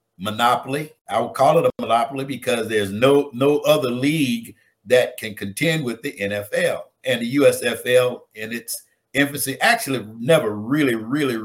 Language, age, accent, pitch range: English, 60-79, American, 105-145 Hz